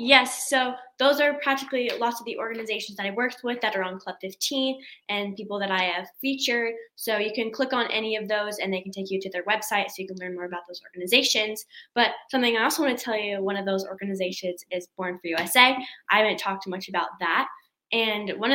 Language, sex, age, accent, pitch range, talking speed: English, female, 10-29, American, 195-255 Hz, 235 wpm